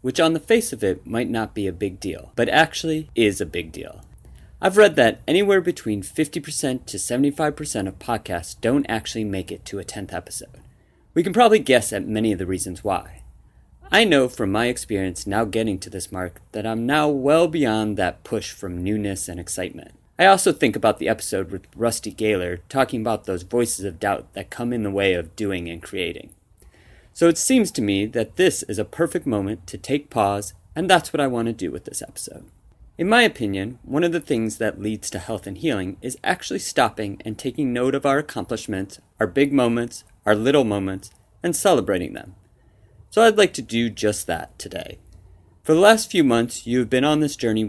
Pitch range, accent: 100-140 Hz, American